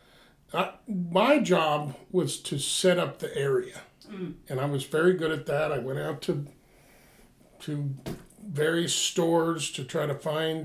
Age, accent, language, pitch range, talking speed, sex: 50-69, American, English, 140-175 Hz, 150 wpm, male